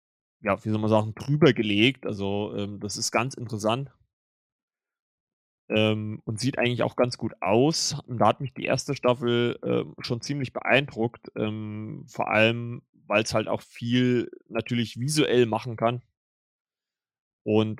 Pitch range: 105-125 Hz